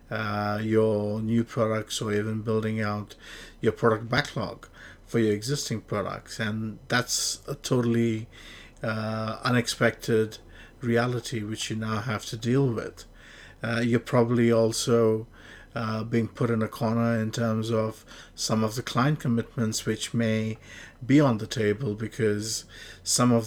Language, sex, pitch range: English, male, 110-120 Hz